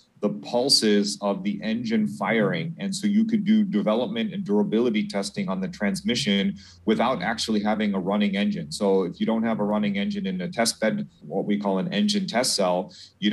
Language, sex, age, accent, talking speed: English, male, 30-49, American, 200 wpm